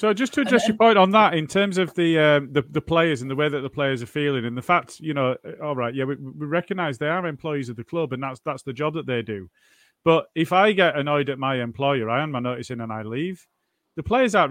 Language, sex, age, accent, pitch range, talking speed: English, male, 30-49, British, 130-165 Hz, 280 wpm